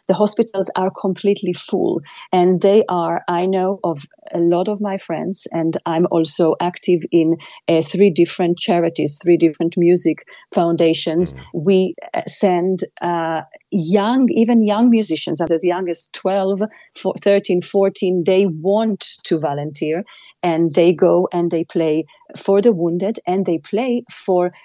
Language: German